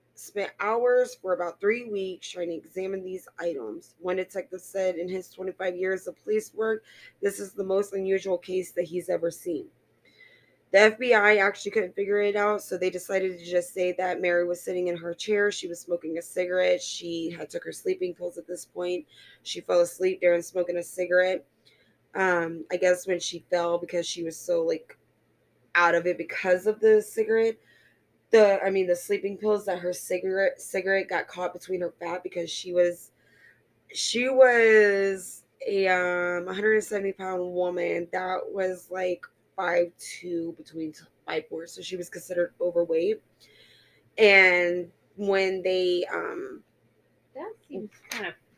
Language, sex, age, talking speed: English, female, 20-39, 170 wpm